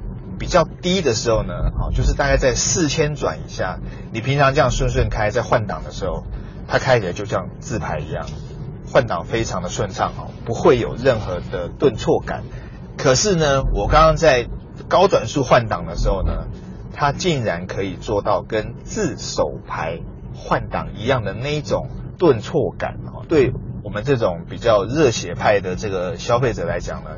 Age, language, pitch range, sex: 30-49, Chinese, 115-150 Hz, male